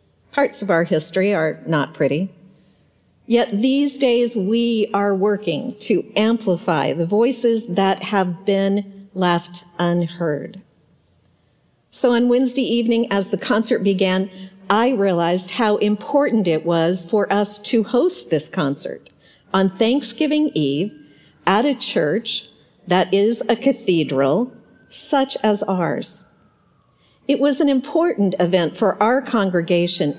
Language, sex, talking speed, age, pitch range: English, female, 125 wpm, 50-69, 175-235 Hz